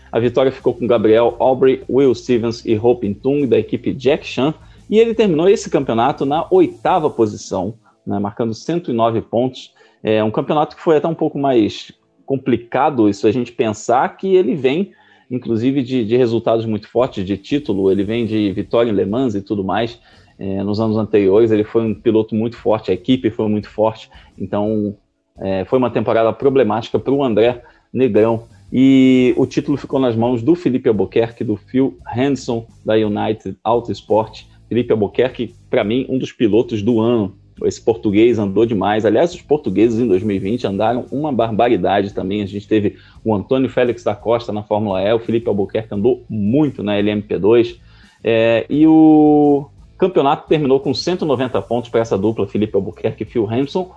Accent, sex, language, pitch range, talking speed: Brazilian, male, Portuguese, 105-130 Hz, 175 wpm